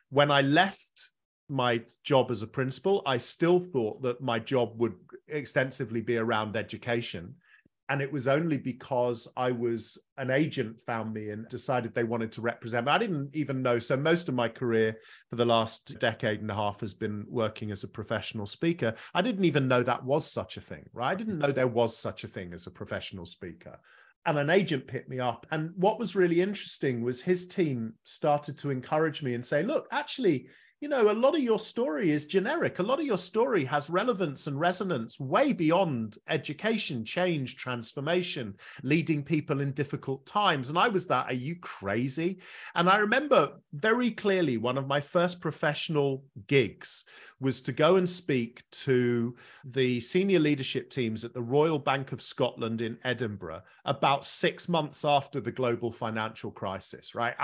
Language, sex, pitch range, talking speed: English, male, 120-165 Hz, 185 wpm